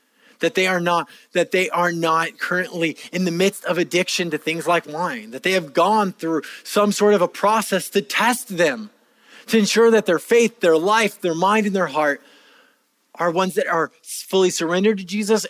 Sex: male